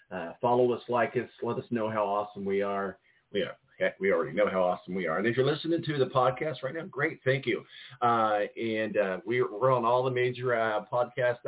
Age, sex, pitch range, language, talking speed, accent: 40-59, male, 110-145 Hz, English, 225 wpm, American